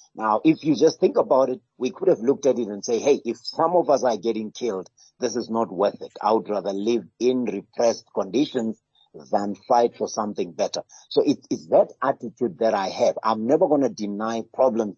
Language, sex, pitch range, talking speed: English, male, 105-130 Hz, 210 wpm